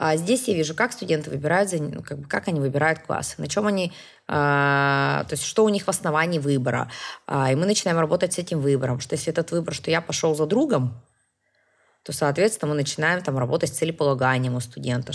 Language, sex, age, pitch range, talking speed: Russian, female, 20-39, 145-190 Hz, 205 wpm